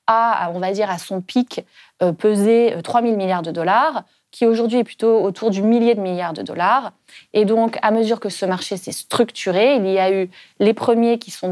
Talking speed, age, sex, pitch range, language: 205 wpm, 20-39, female, 185-235 Hz, French